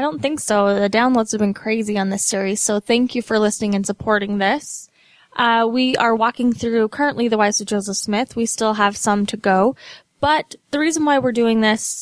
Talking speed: 220 wpm